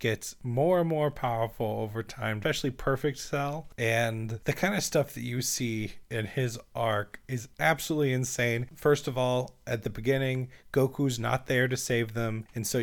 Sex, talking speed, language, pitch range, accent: male, 180 wpm, English, 115-140 Hz, American